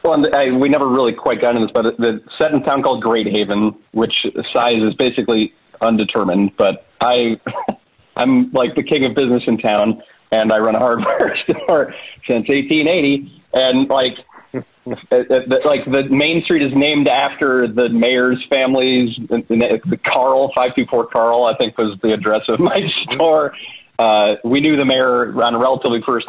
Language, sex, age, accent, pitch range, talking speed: English, male, 40-59, American, 115-140 Hz, 170 wpm